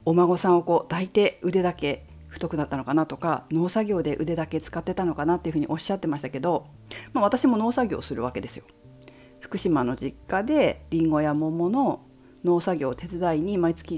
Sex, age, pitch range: female, 40-59, 140-225 Hz